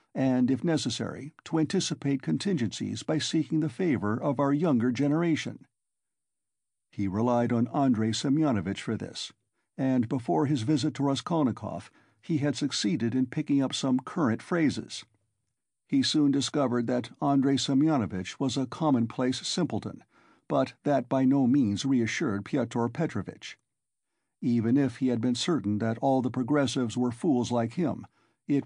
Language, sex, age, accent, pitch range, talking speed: English, male, 60-79, American, 115-150 Hz, 145 wpm